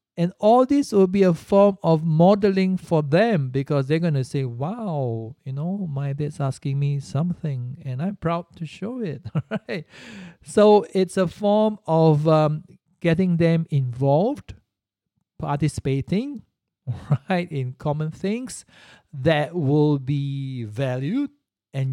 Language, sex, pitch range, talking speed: English, male, 135-175 Hz, 135 wpm